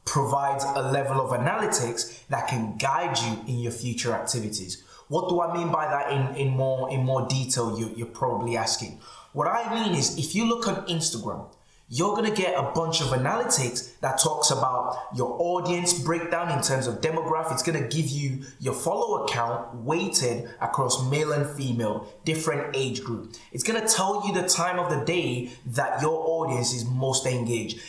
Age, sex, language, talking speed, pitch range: 20-39, male, English, 185 wpm, 120-160 Hz